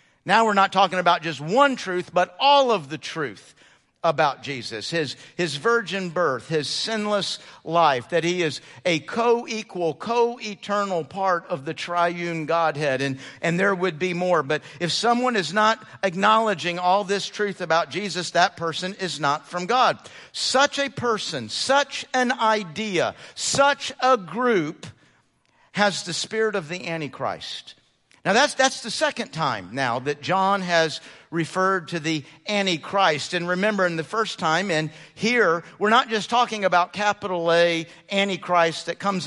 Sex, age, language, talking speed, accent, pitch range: male, 50-69, English, 155 wpm, American, 170-220 Hz